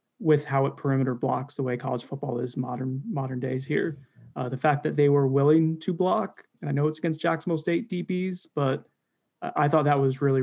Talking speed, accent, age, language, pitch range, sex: 215 wpm, American, 20-39, English, 140-160 Hz, male